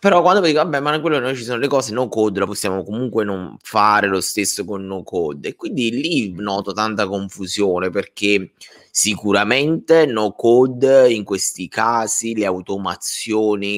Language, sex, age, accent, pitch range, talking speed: Italian, male, 20-39, native, 95-115 Hz, 155 wpm